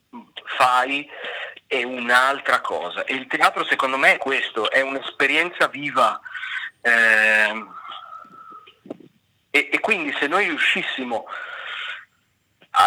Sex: male